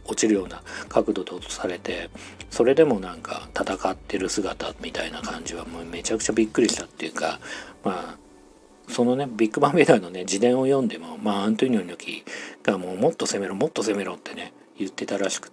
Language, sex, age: Japanese, male, 40-59